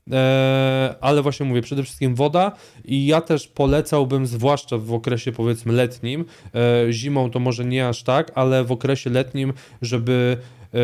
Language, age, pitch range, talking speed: Polish, 20-39, 120-135 Hz, 145 wpm